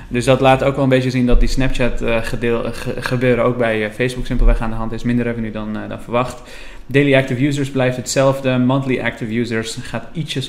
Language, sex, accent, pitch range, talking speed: Dutch, male, Dutch, 115-130 Hz, 225 wpm